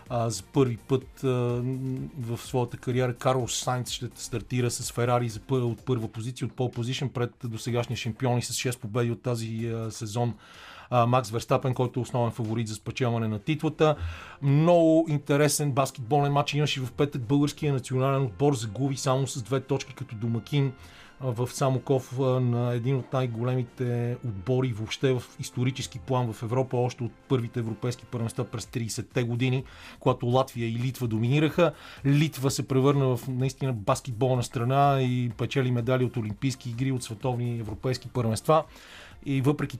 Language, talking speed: Bulgarian, 150 wpm